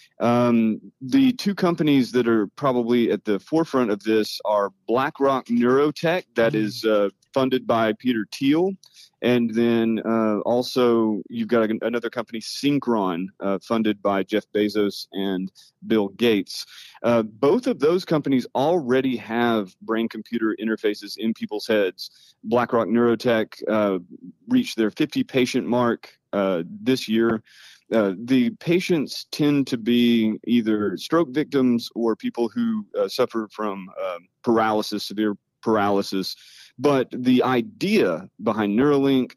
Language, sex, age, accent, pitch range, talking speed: English, male, 30-49, American, 110-135 Hz, 130 wpm